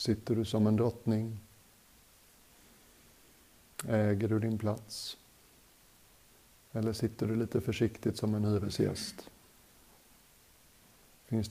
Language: Swedish